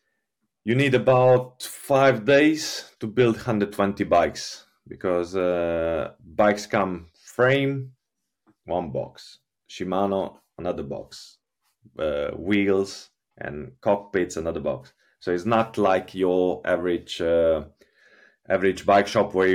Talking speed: 110 wpm